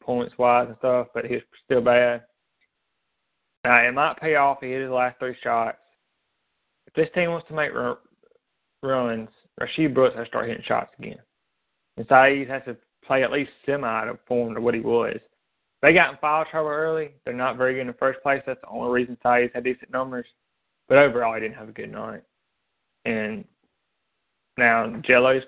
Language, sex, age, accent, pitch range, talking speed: English, male, 20-39, American, 120-130 Hz, 195 wpm